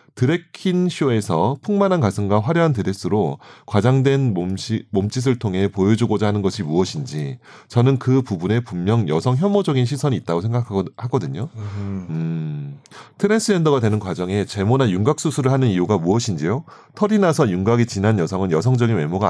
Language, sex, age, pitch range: Korean, male, 30-49, 100-140 Hz